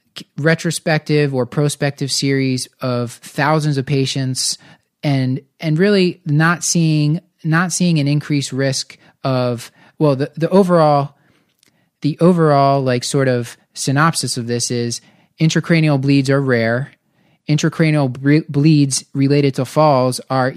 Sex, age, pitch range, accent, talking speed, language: male, 20-39, 125-150 Hz, American, 125 wpm, English